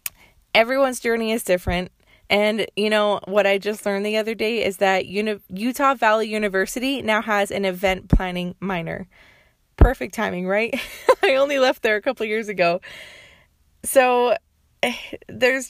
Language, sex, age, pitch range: English, female, 20-39, 185-225 Hz